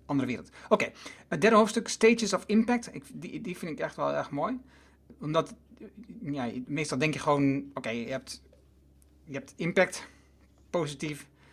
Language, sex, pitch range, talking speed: Dutch, male, 135-180 Hz, 170 wpm